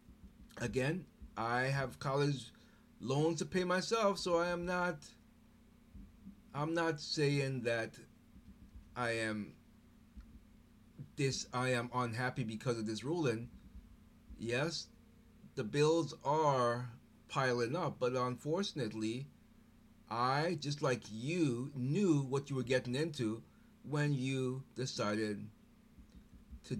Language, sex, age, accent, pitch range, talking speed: English, male, 30-49, American, 120-170 Hz, 105 wpm